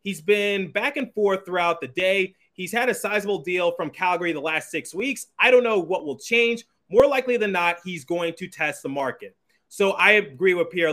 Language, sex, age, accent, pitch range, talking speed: English, male, 30-49, American, 150-185 Hz, 220 wpm